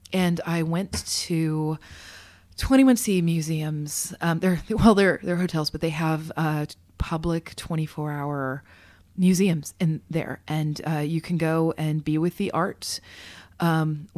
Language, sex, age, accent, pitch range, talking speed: English, female, 30-49, American, 150-170 Hz, 135 wpm